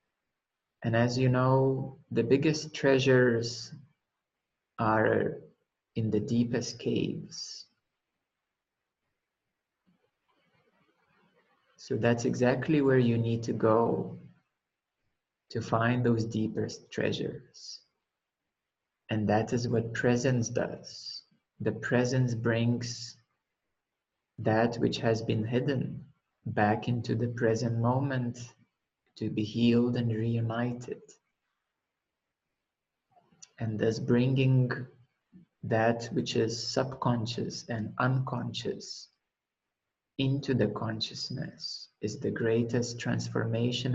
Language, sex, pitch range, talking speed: English, male, 115-130 Hz, 90 wpm